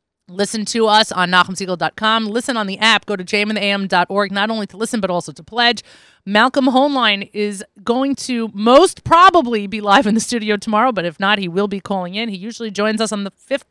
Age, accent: 30-49, American